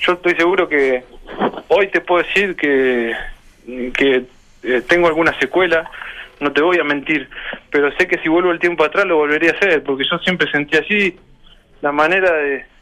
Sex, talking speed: male, 185 wpm